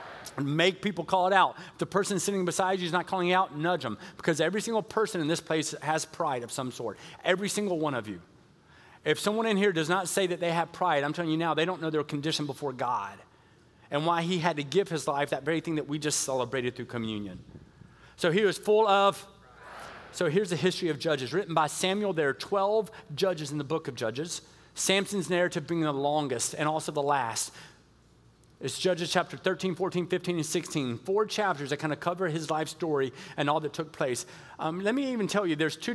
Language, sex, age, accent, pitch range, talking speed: English, male, 30-49, American, 150-185 Hz, 225 wpm